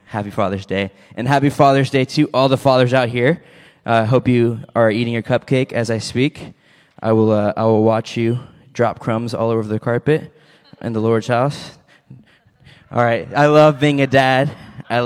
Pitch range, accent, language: 110-130 Hz, American, English